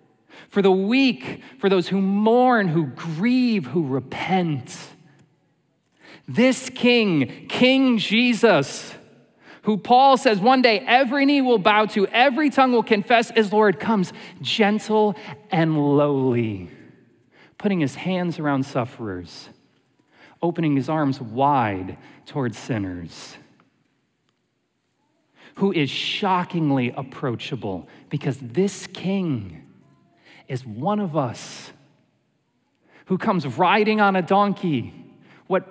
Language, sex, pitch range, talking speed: English, male, 135-205 Hz, 110 wpm